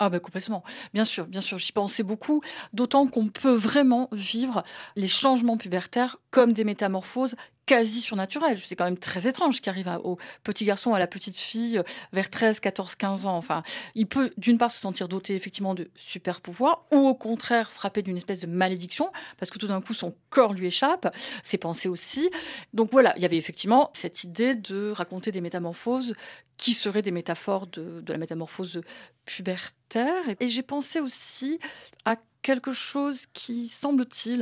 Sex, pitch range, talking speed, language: female, 185-245 Hz, 185 wpm, French